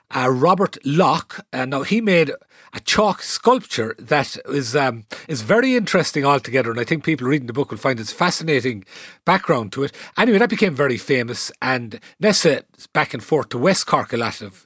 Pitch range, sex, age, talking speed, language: 130-180 Hz, male, 40-59, 200 wpm, English